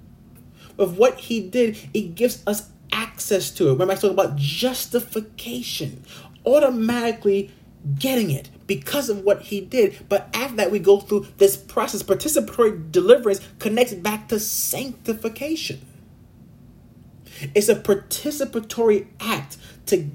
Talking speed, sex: 125 wpm, male